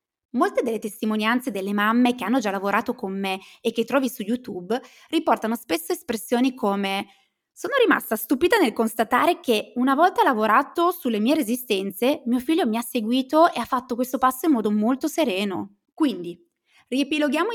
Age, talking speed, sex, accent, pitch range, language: 20-39, 165 wpm, female, native, 220-305 Hz, Italian